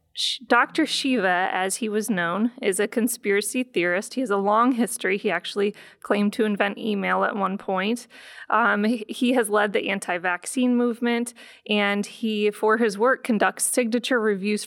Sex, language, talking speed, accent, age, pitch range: female, English, 160 wpm, American, 20-39, 205-240 Hz